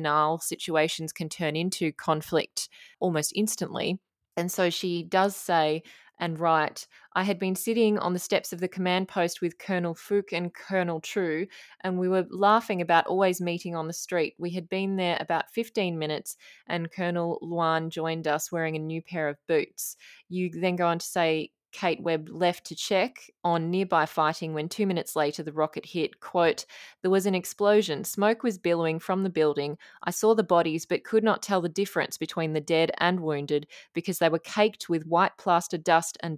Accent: Australian